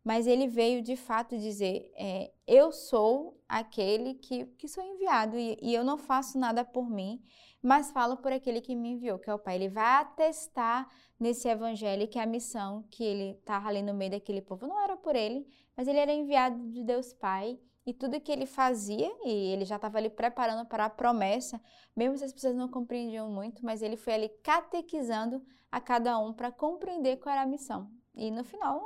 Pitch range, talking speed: 220-265 Hz, 205 wpm